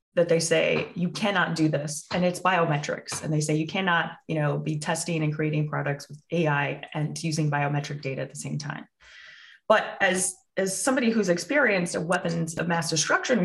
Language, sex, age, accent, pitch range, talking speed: English, female, 20-39, American, 160-210 Hz, 190 wpm